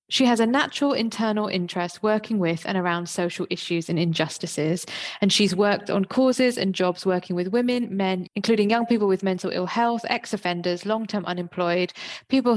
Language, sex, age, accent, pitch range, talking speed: English, female, 20-39, British, 180-225 Hz, 170 wpm